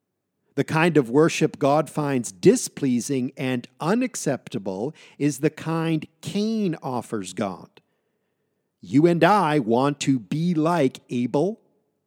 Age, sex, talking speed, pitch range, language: 50-69, male, 115 wpm, 135-175 Hz, English